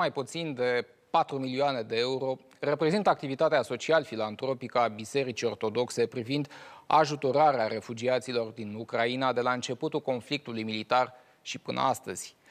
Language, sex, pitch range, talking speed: Romanian, male, 120-155 Hz, 125 wpm